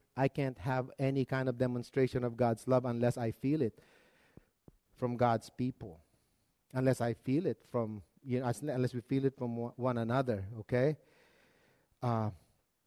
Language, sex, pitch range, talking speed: English, male, 125-190 Hz, 155 wpm